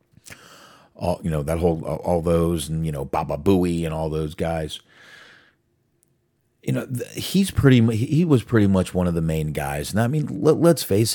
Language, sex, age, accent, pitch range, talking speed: English, male, 40-59, American, 85-115 Hz, 185 wpm